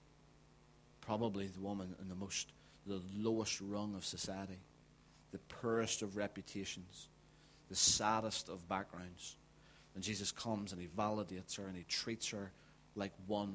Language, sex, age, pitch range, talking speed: English, male, 30-49, 95-110 Hz, 140 wpm